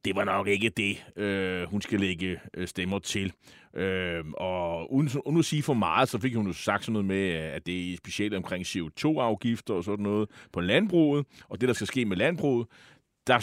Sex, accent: male, native